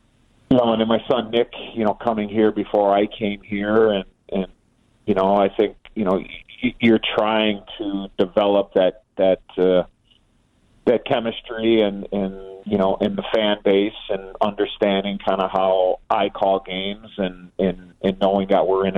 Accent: American